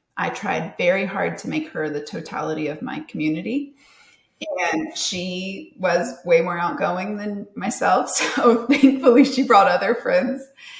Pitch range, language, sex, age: 190-265 Hz, English, female, 30-49